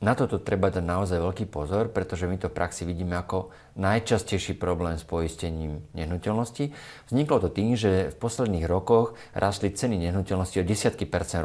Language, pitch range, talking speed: Slovak, 90-110 Hz, 170 wpm